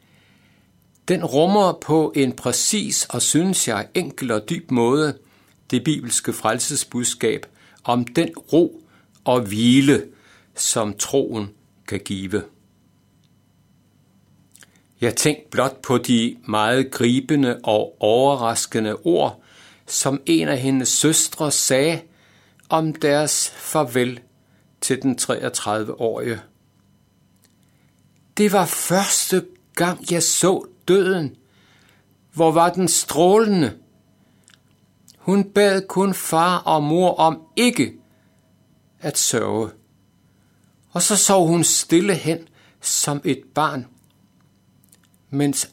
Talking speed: 100 wpm